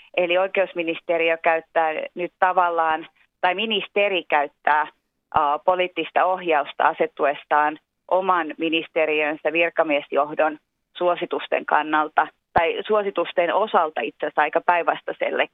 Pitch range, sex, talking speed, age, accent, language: 155-180 Hz, female, 95 wpm, 30-49, native, Finnish